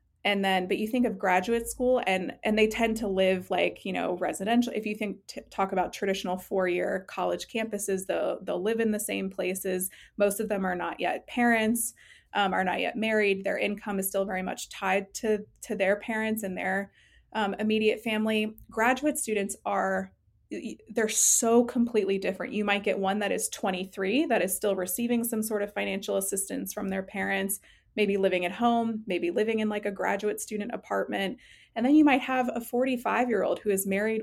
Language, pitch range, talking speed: English, 195-225 Hz, 200 wpm